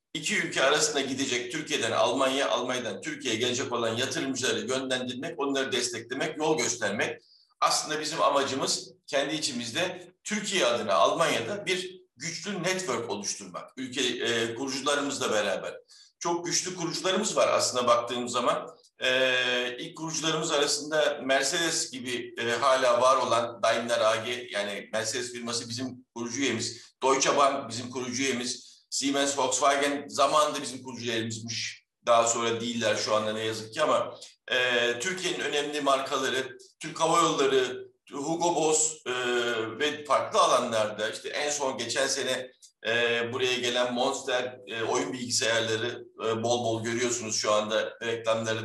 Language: Turkish